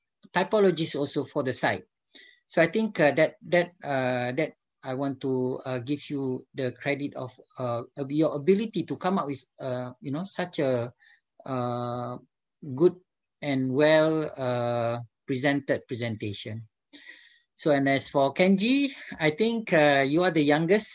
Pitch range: 130-170 Hz